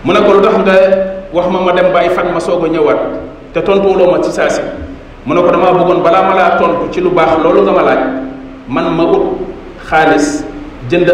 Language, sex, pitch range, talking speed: French, male, 160-200 Hz, 55 wpm